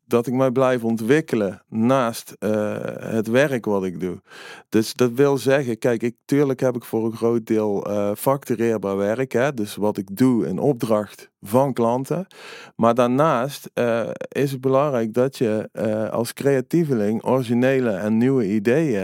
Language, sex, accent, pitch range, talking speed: Dutch, male, Dutch, 115-140 Hz, 165 wpm